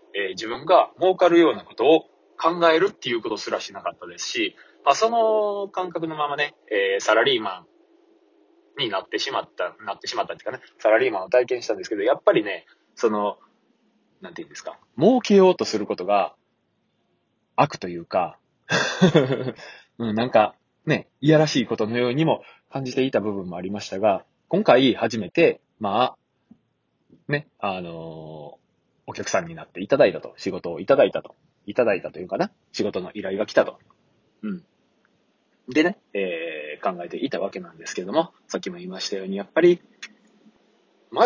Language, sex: Japanese, male